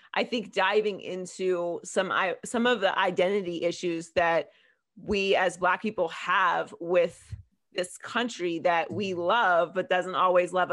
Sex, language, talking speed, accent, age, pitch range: female, English, 145 wpm, American, 30-49, 175-230 Hz